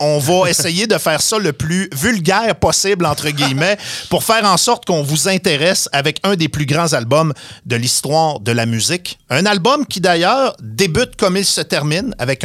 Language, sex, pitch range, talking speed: French, male, 130-190 Hz, 195 wpm